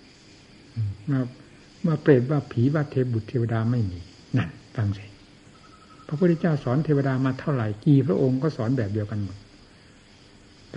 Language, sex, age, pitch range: Thai, male, 60-79, 100-140 Hz